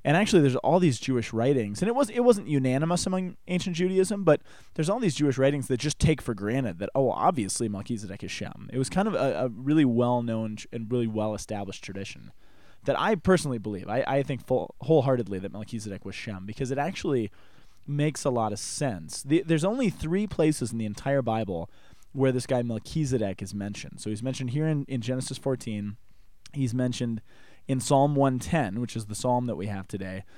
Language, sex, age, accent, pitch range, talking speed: English, male, 20-39, American, 110-145 Hz, 205 wpm